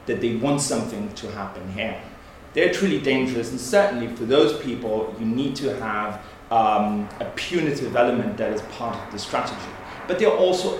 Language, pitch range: English, 110-135 Hz